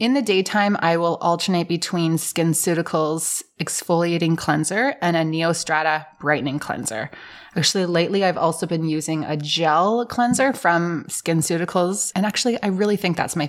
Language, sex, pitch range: English, female, 160-200 Hz